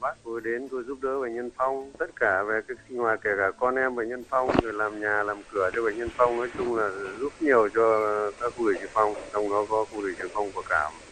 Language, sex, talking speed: Vietnamese, male, 265 wpm